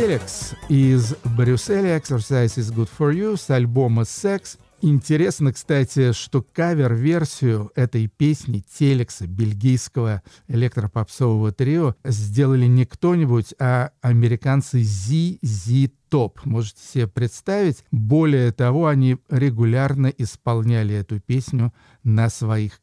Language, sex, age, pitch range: Russian, male, 50-69, 115-145 Hz